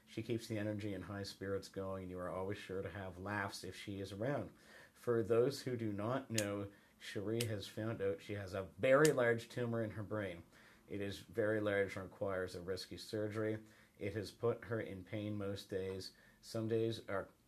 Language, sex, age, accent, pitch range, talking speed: English, male, 50-69, American, 95-115 Hz, 205 wpm